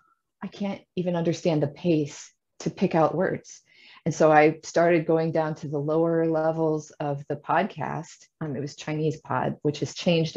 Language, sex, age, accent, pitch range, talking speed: English, female, 30-49, American, 150-190 Hz, 180 wpm